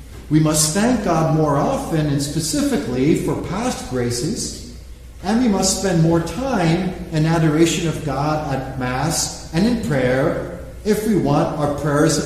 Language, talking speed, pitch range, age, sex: English, 155 wpm, 130-210 Hz, 50-69, male